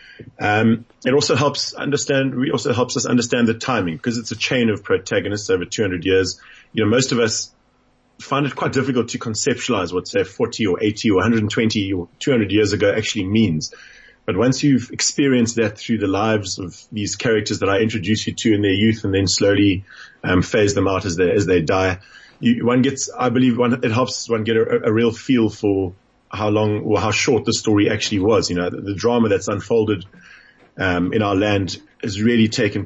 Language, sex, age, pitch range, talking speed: English, male, 30-49, 100-120 Hz, 210 wpm